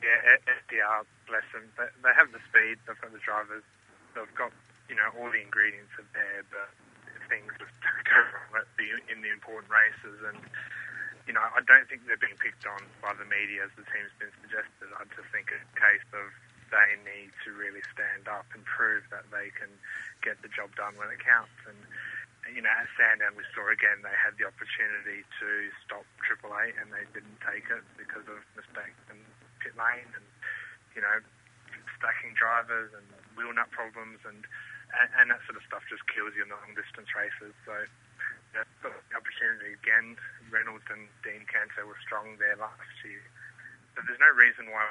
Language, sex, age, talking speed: English, male, 30-49, 190 wpm